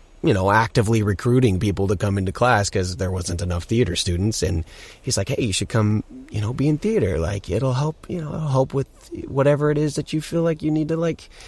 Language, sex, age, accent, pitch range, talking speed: English, male, 30-49, American, 95-115 Hz, 240 wpm